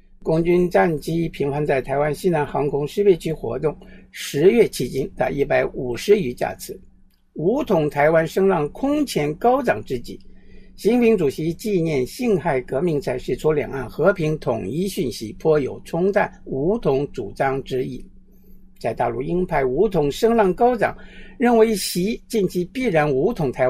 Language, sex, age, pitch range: Chinese, male, 60-79, 150-205 Hz